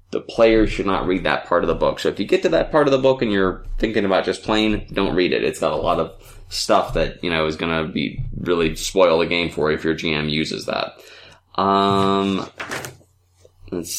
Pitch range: 85-110 Hz